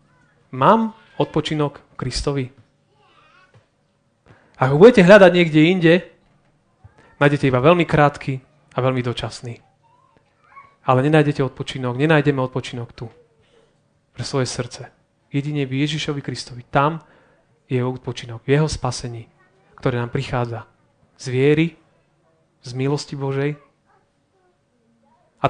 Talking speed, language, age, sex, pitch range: 100 wpm, Slovak, 30-49, male, 130-155 Hz